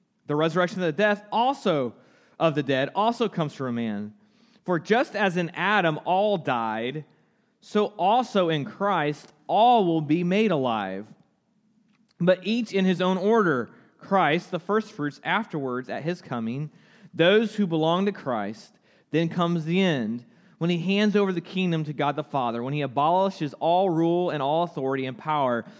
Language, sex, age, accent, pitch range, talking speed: English, male, 30-49, American, 145-195 Hz, 160 wpm